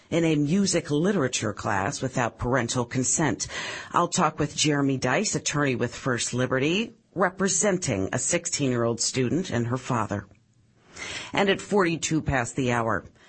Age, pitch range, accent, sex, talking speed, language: 40-59, 125-165 Hz, American, female, 135 wpm, English